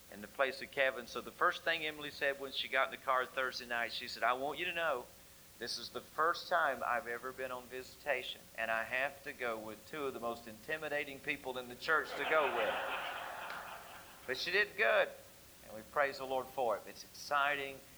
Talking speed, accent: 225 wpm, American